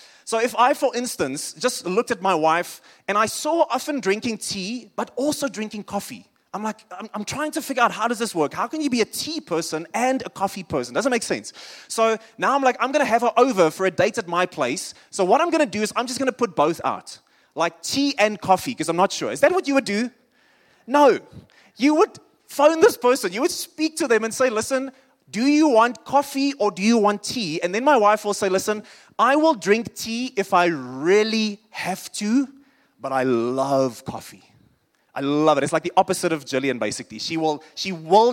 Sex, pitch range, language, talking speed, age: male, 180-255 Hz, English, 225 wpm, 20-39